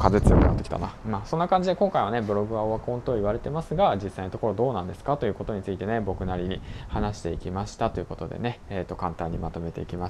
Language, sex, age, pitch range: Japanese, male, 20-39, 95-110 Hz